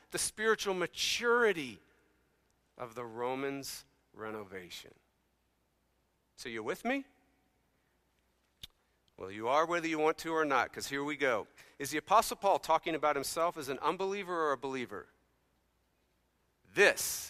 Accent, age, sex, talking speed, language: American, 40-59, male, 130 wpm, English